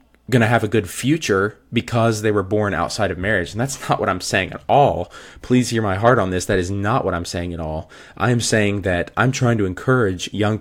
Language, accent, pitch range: English, American, 95-115 Hz